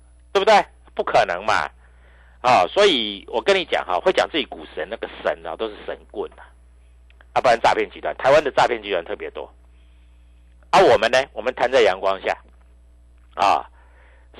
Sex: male